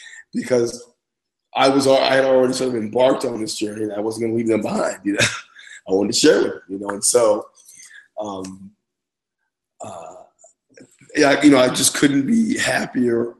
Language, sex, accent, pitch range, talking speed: English, male, American, 105-130 Hz, 180 wpm